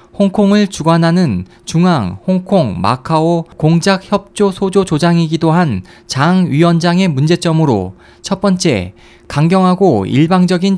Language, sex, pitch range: Korean, male, 140-190 Hz